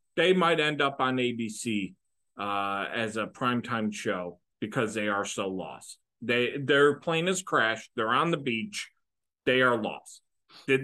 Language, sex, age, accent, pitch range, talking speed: English, male, 40-59, American, 110-150 Hz, 160 wpm